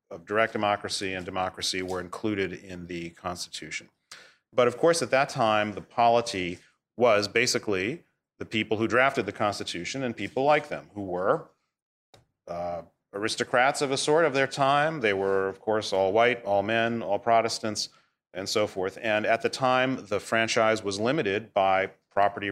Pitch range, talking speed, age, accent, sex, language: 95-115 Hz, 170 wpm, 40-59, American, male, English